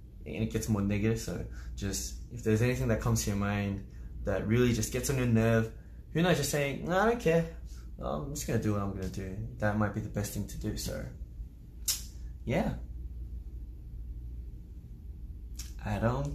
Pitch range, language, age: 95-130 Hz, Korean, 20-39